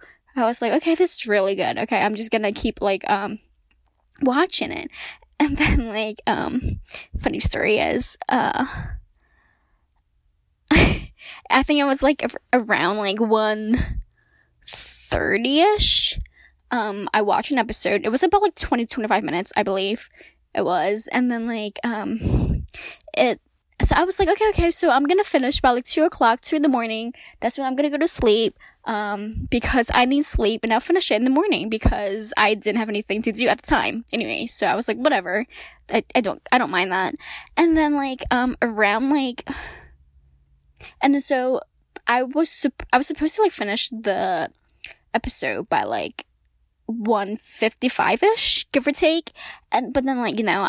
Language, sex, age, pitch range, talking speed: English, female, 10-29, 215-290 Hz, 175 wpm